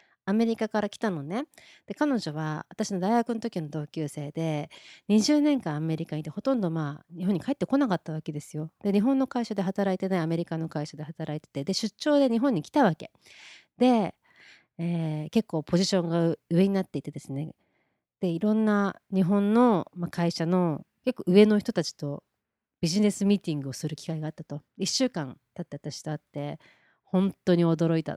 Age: 30-49